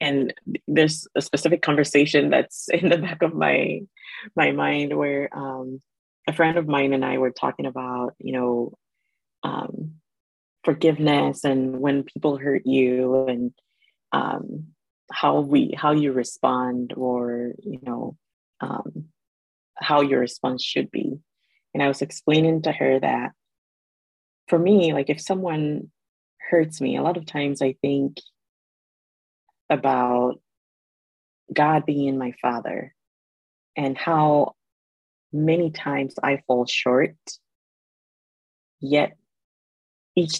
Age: 20-39